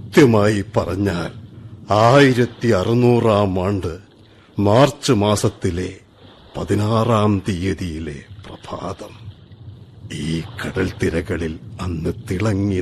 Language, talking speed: Malayalam, 60 wpm